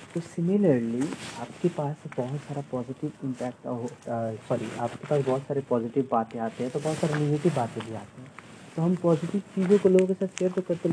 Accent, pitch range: native, 120-160 Hz